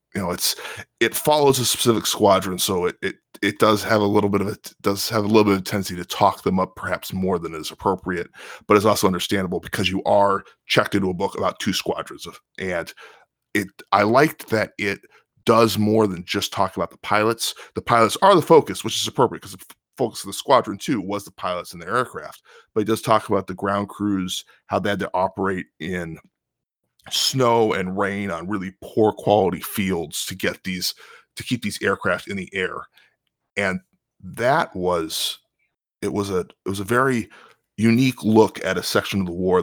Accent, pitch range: American, 95-110 Hz